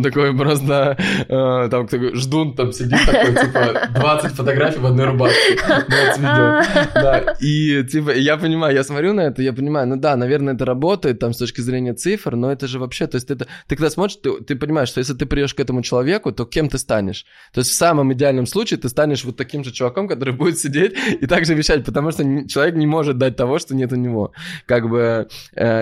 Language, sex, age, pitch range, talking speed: Russian, male, 20-39, 120-145 Hz, 220 wpm